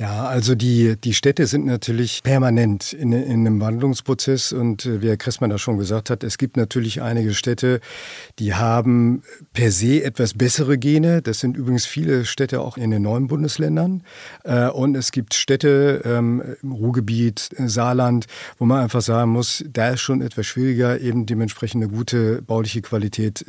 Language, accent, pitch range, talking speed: German, German, 115-135 Hz, 165 wpm